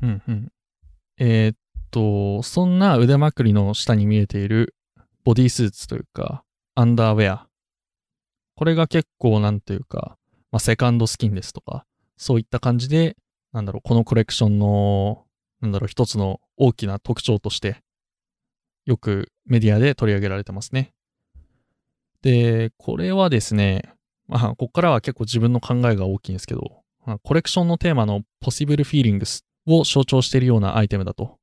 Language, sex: Japanese, male